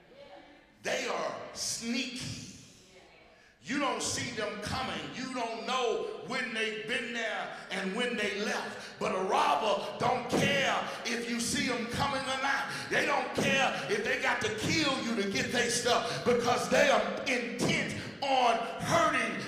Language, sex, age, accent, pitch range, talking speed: English, male, 50-69, American, 235-335 Hz, 155 wpm